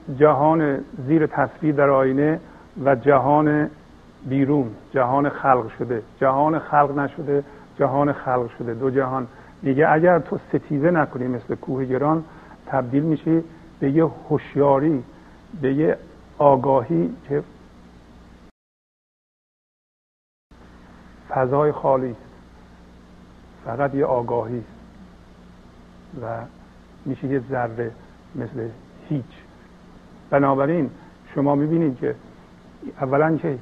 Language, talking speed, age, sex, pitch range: Persian, 95 wpm, 50-69, male, 115-145 Hz